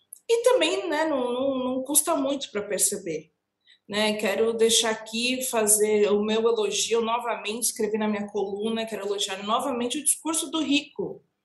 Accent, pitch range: Brazilian, 210-285 Hz